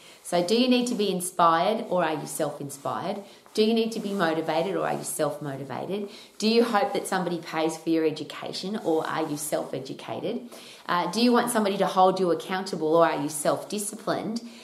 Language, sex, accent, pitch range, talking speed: English, female, Australian, 170-230 Hz, 190 wpm